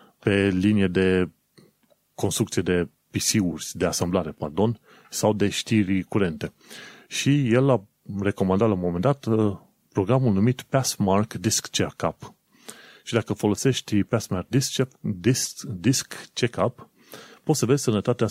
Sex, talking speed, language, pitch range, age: male, 120 wpm, Romanian, 95-125 Hz, 30-49